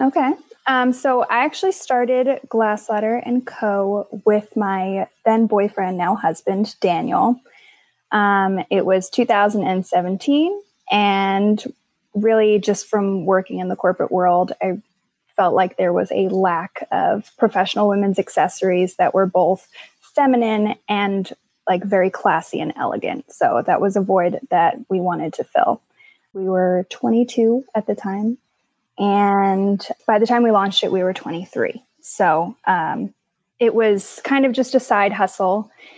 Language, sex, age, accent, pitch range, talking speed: English, female, 10-29, American, 190-225 Hz, 145 wpm